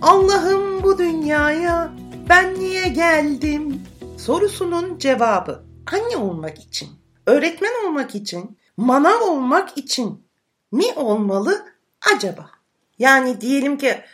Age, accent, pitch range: 60-79, native, 195-290 Hz